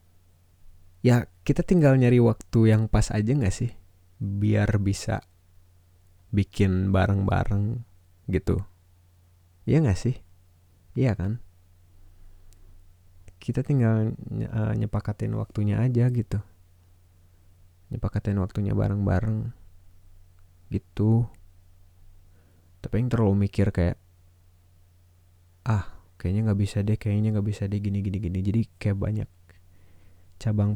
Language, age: Indonesian, 20-39